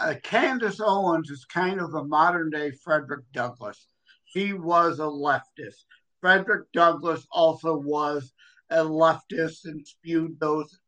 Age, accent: 50-69, American